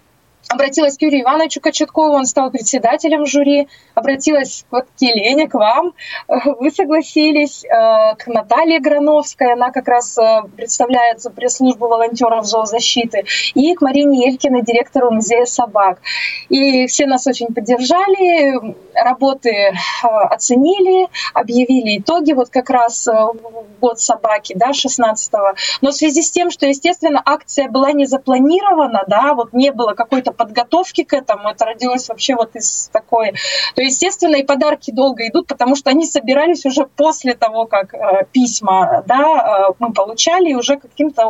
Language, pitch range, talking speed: Russian, 235-300 Hz, 135 wpm